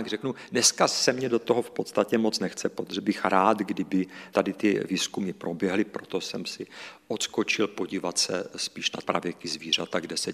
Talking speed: 185 wpm